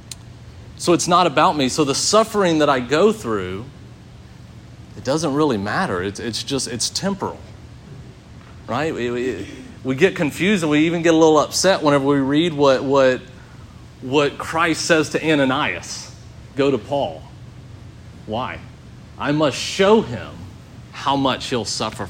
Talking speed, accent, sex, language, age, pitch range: 150 wpm, American, male, English, 40-59, 110-135 Hz